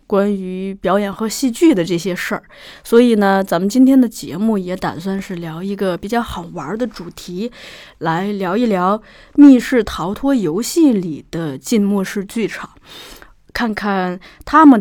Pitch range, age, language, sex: 185-240 Hz, 20-39, Chinese, female